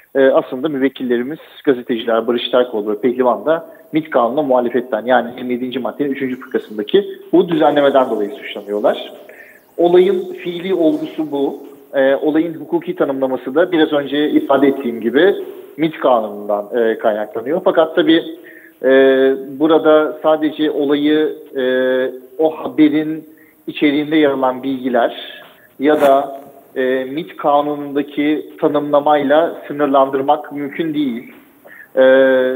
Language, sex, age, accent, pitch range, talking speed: Turkish, male, 40-59, native, 130-155 Hz, 110 wpm